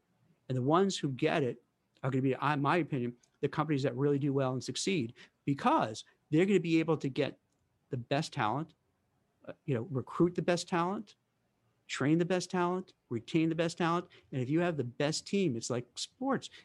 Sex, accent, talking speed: male, American, 200 wpm